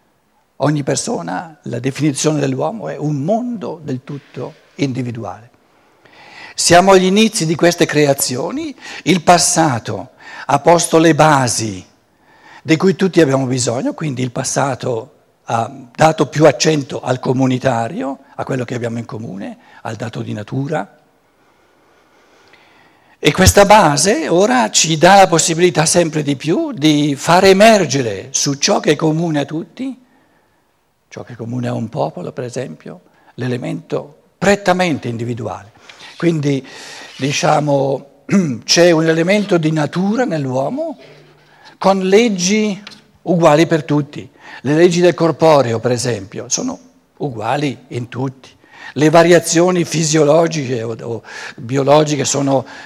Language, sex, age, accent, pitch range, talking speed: Italian, male, 60-79, native, 130-175 Hz, 120 wpm